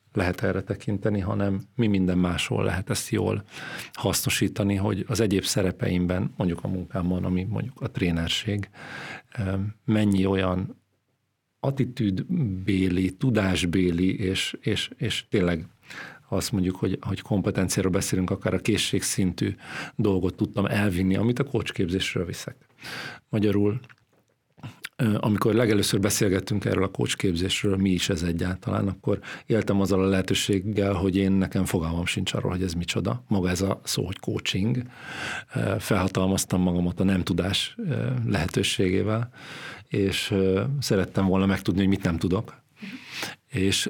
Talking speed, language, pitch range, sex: 125 wpm, Hungarian, 95-115 Hz, male